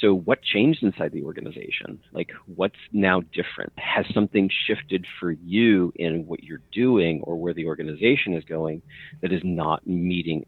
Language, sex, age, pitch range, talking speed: English, male, 40-59, 85-105 Hz, 165 wpm